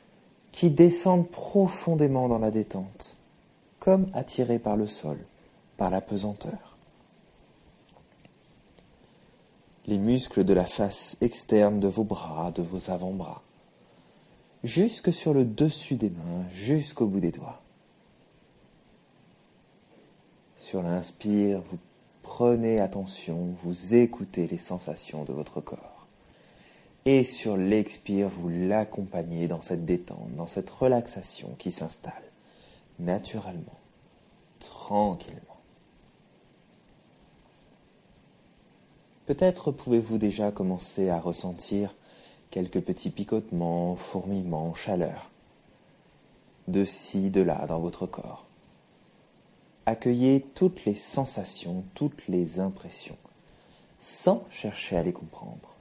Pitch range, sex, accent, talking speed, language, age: 90-125 Hz, male, French, 100 wpm, French, 30-49